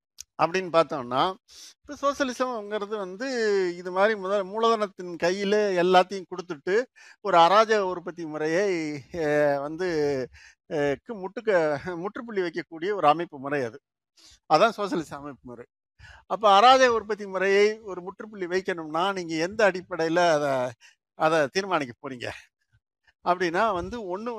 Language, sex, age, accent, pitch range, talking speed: Tamil, male, 50-69, native, 155-205 Hz, 110 wpm